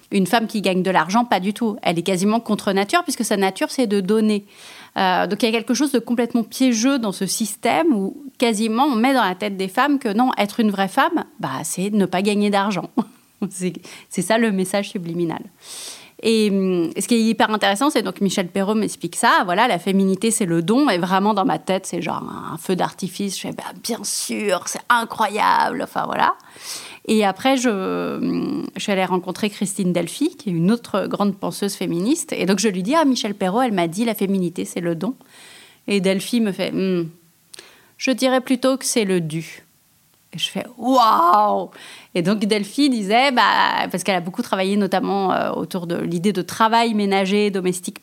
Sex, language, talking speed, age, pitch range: female, French, 210 wpm, 30-49, 190-235 Hz